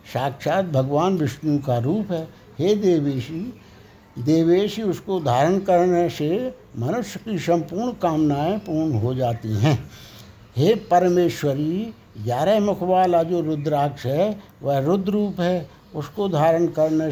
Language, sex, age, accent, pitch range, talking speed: Hindi, male, 60-79, native, 140-195 Hz, 125 wpm